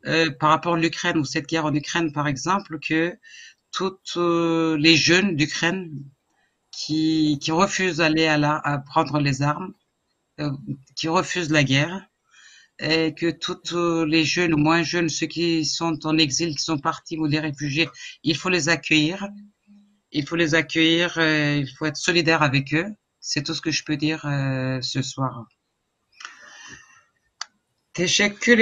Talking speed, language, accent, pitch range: 165 wpm, Turkish, French, 145-170 Hz